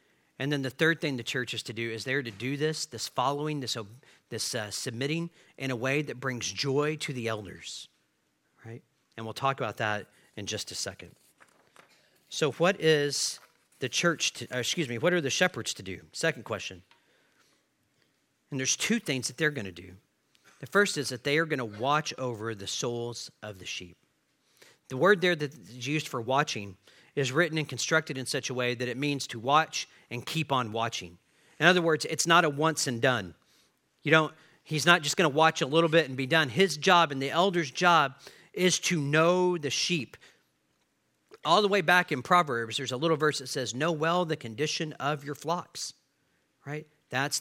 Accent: American